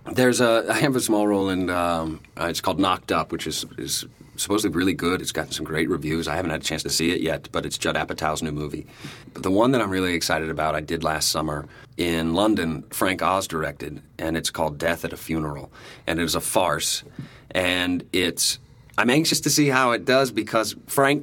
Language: English